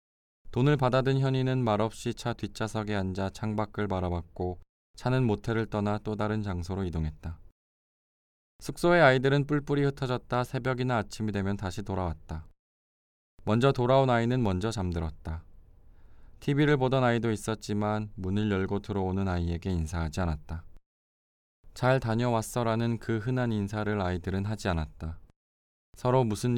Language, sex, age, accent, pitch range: Korean, male, 20-39, native, 90-120 Hz